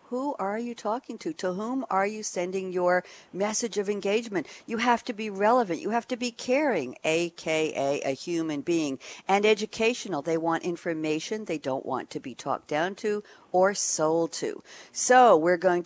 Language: English